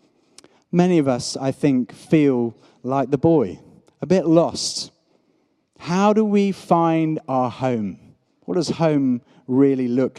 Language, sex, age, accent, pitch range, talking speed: English, male, 30-49, British, 140-180 Hz, 135 wpm